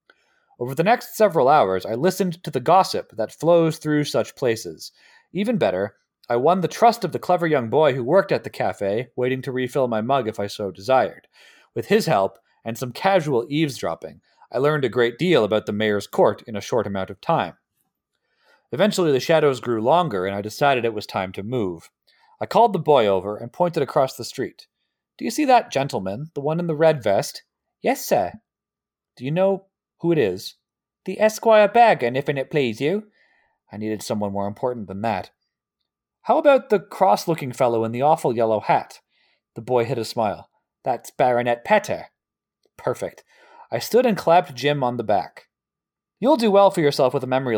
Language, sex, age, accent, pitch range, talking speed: English, male, 30-49, American, 120-190 Hz, 195 wpm